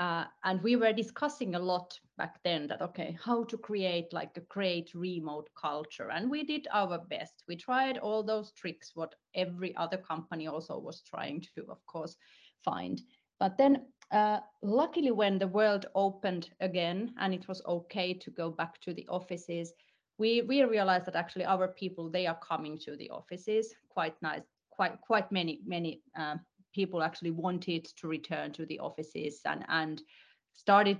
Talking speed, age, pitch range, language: 175 wpm, 30-49, 170-210 Hz, English